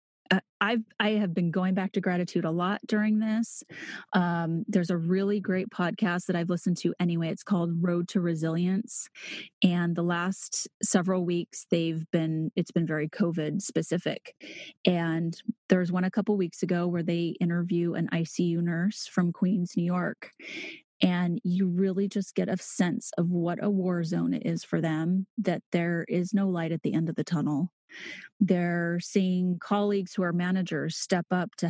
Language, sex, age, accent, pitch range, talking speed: English, female, 30-49, American, 170-205 Hz, 180 wpm